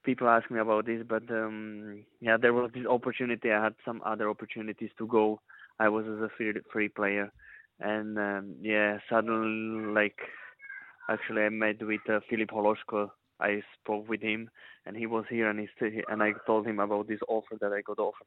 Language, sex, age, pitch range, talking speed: English, male, 20-39, 105-115 Hz, 200 wpm